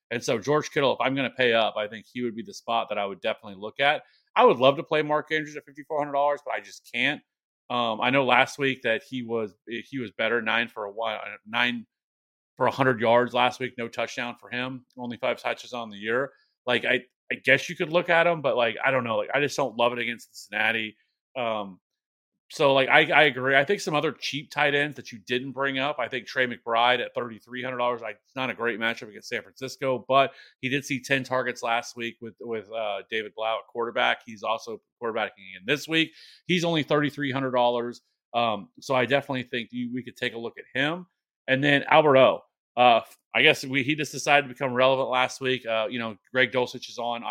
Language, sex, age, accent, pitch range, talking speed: English, male, 30-49, American, 115-140 Hz, 235 wpm